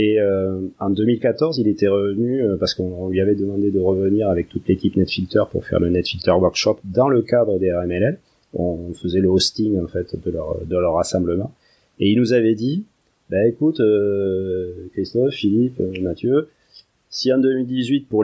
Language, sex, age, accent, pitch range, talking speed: French, male, 30-49, French, 95-115 Hz, 180 wpm